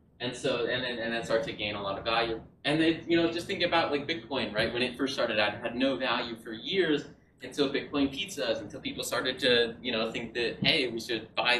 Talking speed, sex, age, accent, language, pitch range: 250 wpm, male, 20-39, American, English, 110-140 Hz